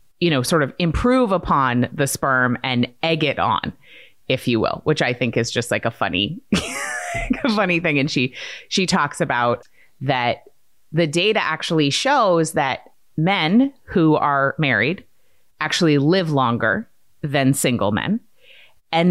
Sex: female